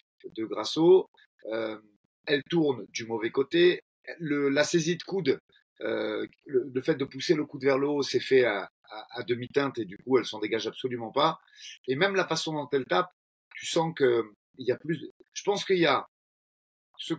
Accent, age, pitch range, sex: French, 30-49, 125-170 Hz, male